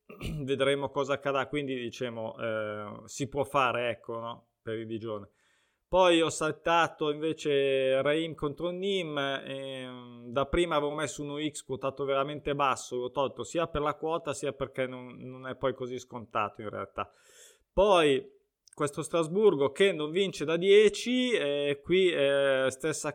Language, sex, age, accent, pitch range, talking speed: Italian, male, 20-39, native, 130-160 Hz, 155 wpm